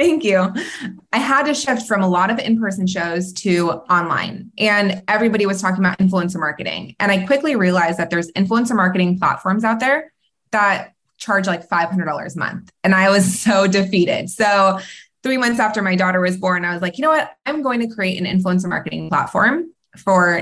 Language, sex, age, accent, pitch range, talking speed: English, female, 20-39, American, 180-220 Hz, 195 wpm